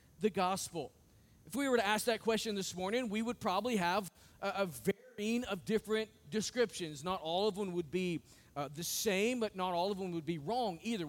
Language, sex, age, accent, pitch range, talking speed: English, male, 40-59, American, 175-220 Hz, 210 wpm